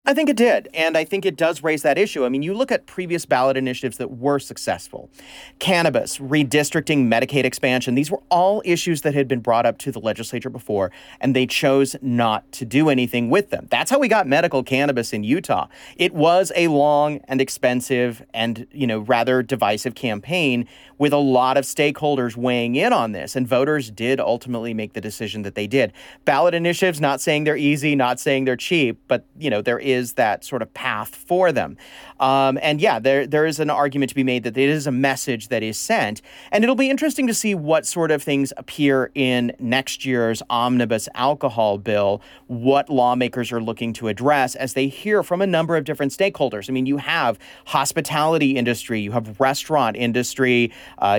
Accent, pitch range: American, 125-155 Hz